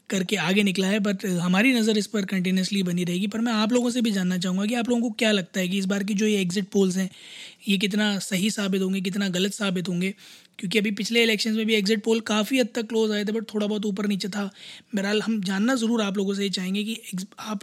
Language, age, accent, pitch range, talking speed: Hindi, 20-39, native, 190-220 Hz, 255 wpm